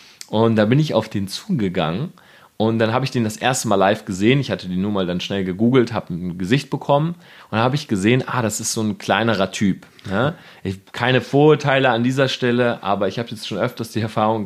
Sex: male